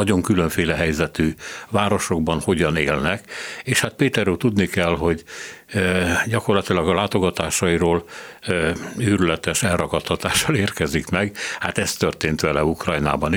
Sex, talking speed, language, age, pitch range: male, 110 wpm, Hungarian, 60-79, 85-105 Hz